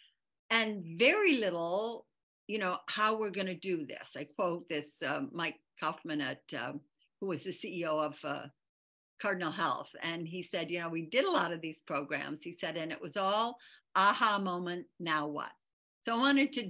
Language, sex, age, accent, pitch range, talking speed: English, female, 60-79, American, 155-200 Hz, 190 wpm